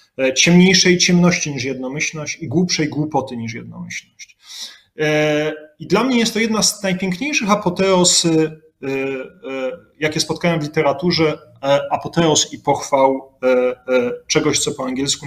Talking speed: 115 wpm